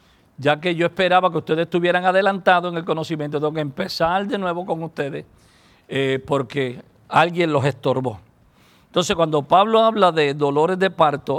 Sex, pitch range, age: male, 145-180 Hz, 50-69